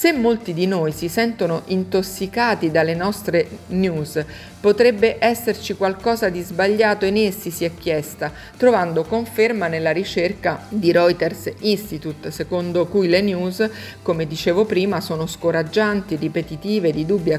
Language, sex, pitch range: Italian, female, 165-205 Hz